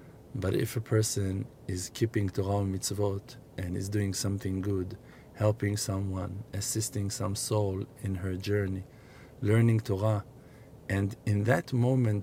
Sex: male